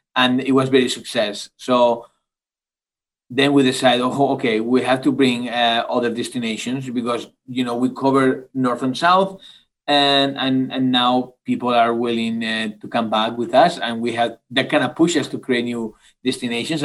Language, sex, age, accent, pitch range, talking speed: English, male, 40-59, Spanish, 120-145 Hz, 180 wpm